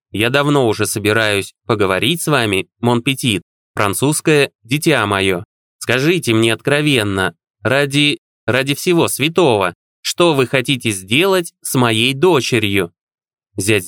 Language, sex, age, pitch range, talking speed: Russian, male, 20-39, 110-160 Hz, 110 wpm